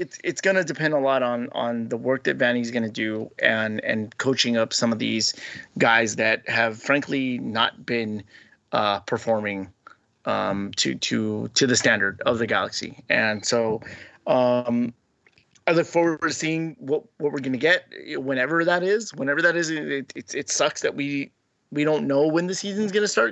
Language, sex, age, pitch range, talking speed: English, male, 30-49, 115-150 Hz, 195 wpm